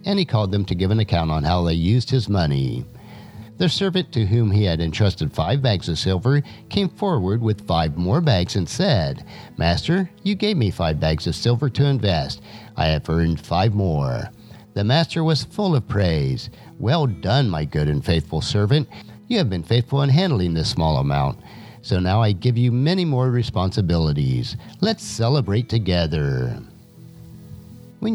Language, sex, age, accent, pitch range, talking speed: English, male, 50-69, American, 90-135 Hz, 175 wpm